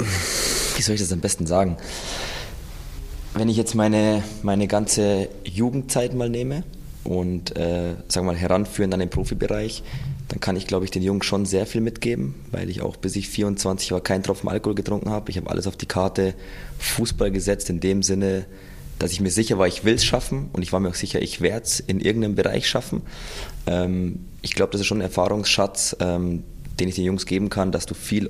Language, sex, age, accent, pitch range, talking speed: German, male, 20-39, German, 90-105 Hz, 205 wpm